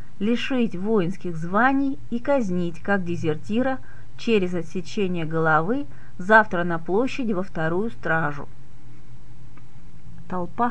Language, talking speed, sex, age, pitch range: Russian, 95 wpm, female, 30-49, 140-205 Hz